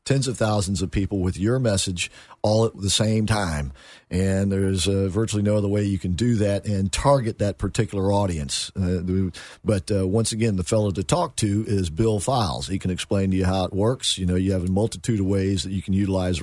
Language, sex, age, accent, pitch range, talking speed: English, male, 50-69, American, 95-110 Hz, 225 wpm